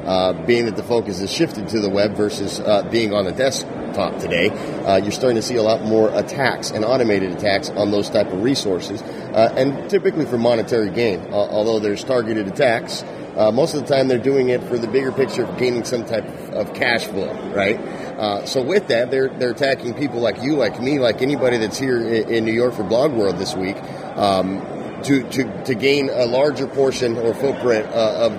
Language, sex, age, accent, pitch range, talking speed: English, male, 30-49, American, 110-130 Hz, 215 wpm